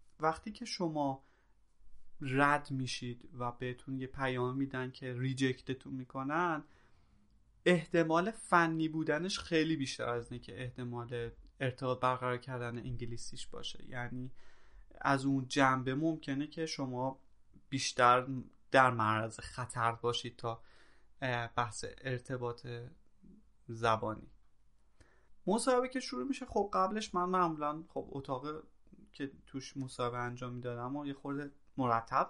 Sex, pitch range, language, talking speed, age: male, 125-165 Hz, Persian, 115 wpm, 30-49